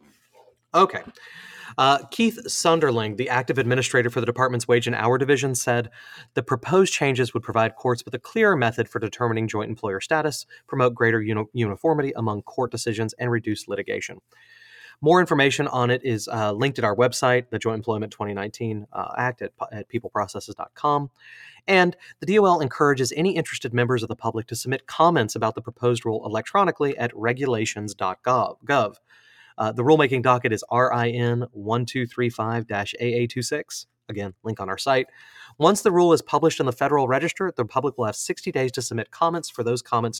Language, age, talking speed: English, 30-49, 165 wpm